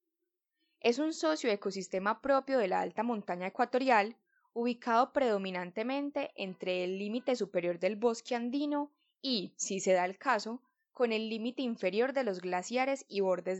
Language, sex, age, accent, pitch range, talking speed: Spanish, female, 10-29, Colombian, 190-250 Hz, 150 wpm